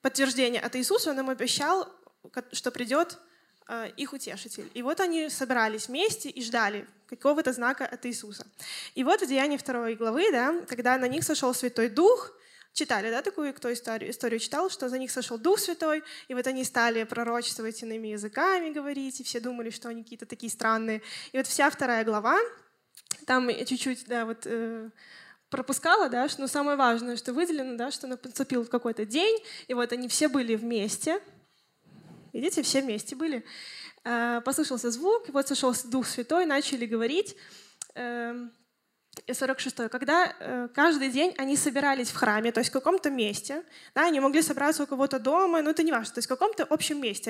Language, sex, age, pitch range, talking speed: Russian, female, 10-29, 235-305 Hz, 175 wpm